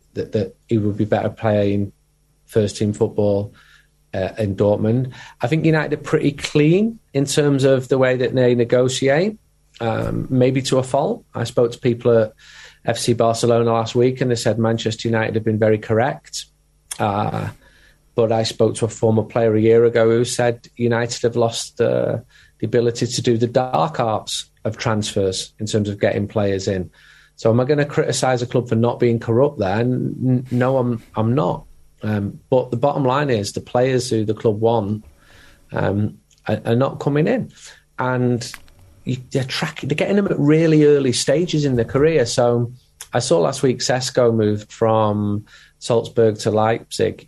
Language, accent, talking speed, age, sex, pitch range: English, British, 180 wpm, 30-49, male, 110-130 Hz